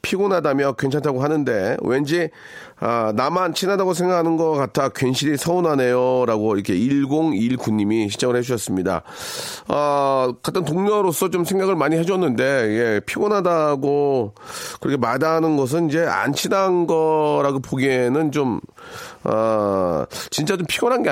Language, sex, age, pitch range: Korean, male, 40-59, 125-165 Hz